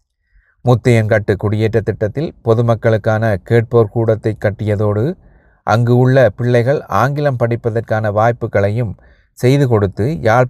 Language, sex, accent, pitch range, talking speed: Tamil, male, native, 105-125 Hz, 90 wpm